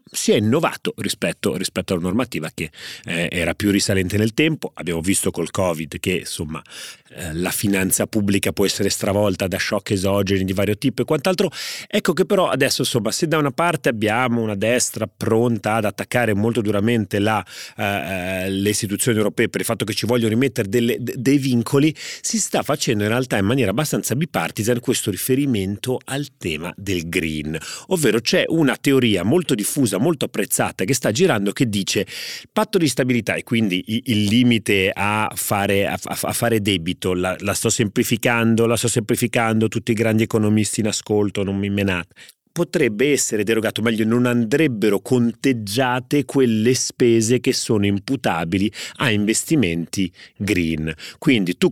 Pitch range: 100-125 Hz